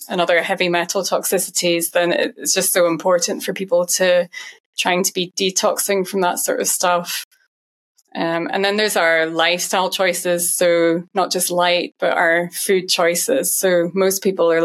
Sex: female